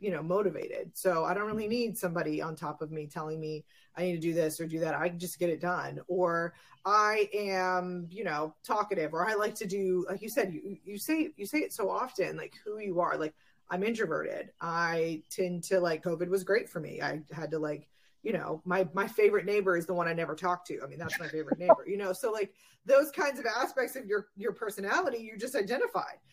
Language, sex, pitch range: English, female, 175-255 Hz